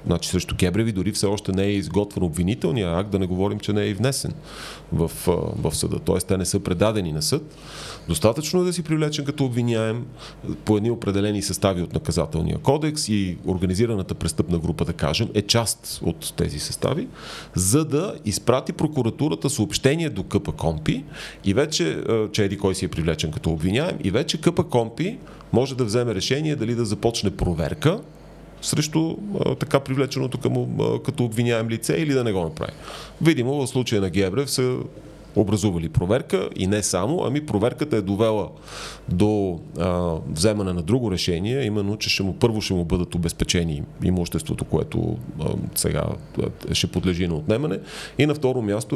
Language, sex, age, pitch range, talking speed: Bulgarian, male, 30-49, 95-130 Hz, 175 wpm